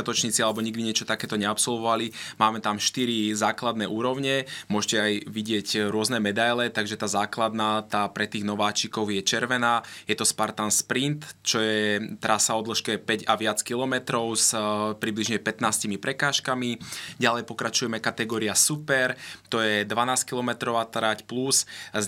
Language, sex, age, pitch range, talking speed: Slovak, male, 20-39, 110-120 Hz, 140 wpm